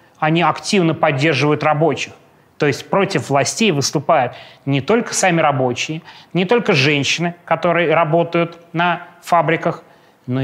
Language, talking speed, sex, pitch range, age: Russian, 120 wpm, male, 145-175 Hz, 20-39